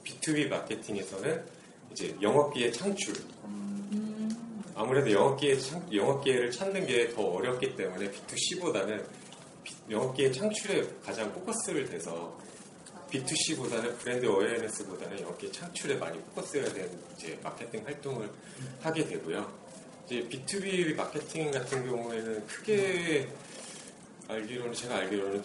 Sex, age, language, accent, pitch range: male, 30-49, Korean, native, 115-195 Hz